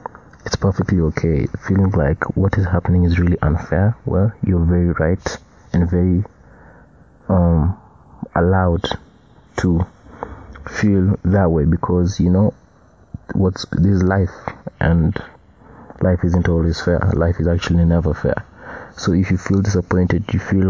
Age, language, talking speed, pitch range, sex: 30-49, English, 135 wpm, 85-95 Hz, male